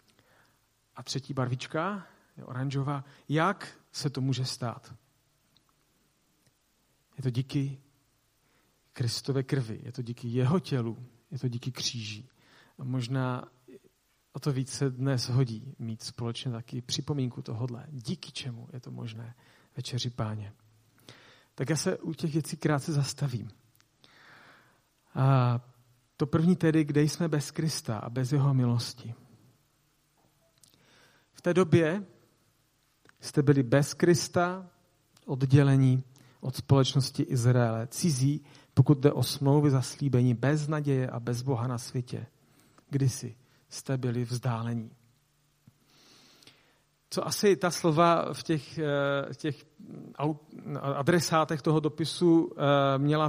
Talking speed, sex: 115 wpm, male